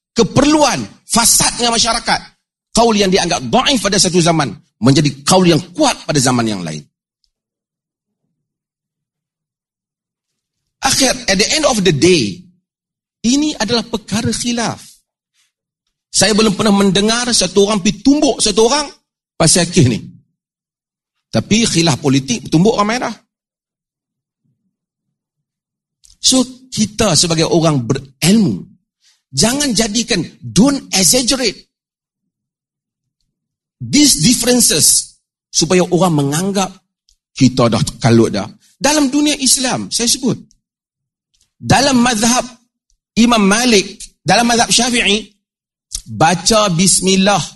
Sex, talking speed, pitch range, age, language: male, 100 wpm, 170-235 Hz, 40-59, Malay